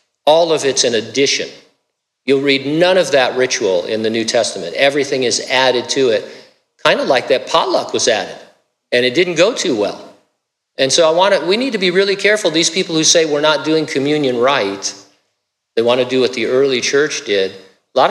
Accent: American